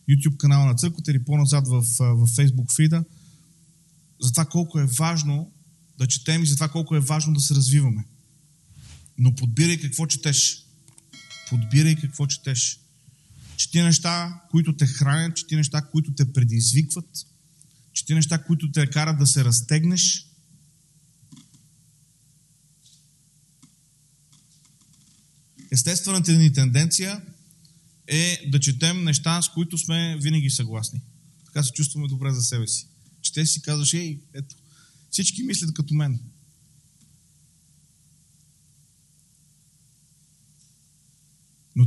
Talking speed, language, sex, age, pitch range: 110 wpm, Bulgarian, male, 30-49, 140-160 Hz